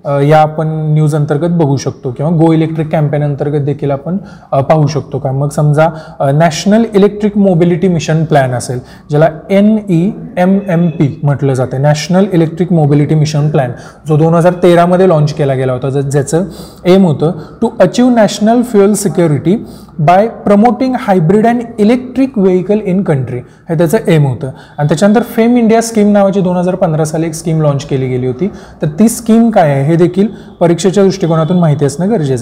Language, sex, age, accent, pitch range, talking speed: Marathi, male, 20-39, native, 150-195 Hz, 155 wpm